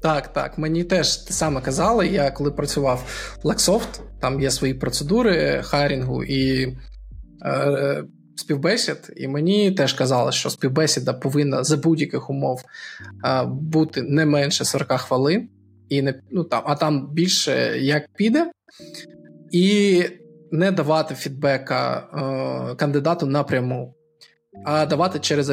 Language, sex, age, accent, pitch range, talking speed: Ukrainian, male, 20-39, native, 140-170 Hz, 130 wpm